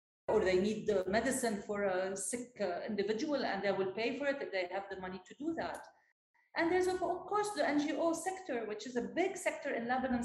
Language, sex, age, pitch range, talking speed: English, female, 40-59, 215-260 Hz, 220 wpm